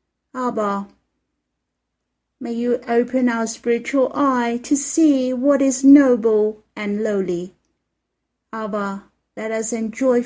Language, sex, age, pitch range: Chinese, female, 50-69, 225-275 Hz